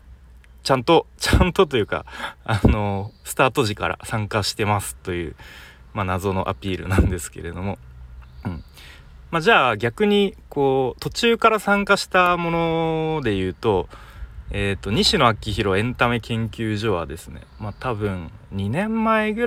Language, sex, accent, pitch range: Japanese, male, native, 85-130 Hz